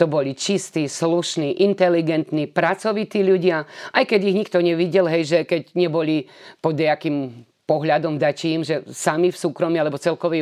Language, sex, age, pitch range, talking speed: Slovak, female, 30-49, 150-180 Hz, 145 wpm